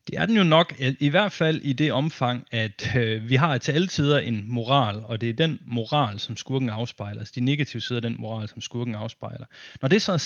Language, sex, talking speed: Danish, male, 240 wpm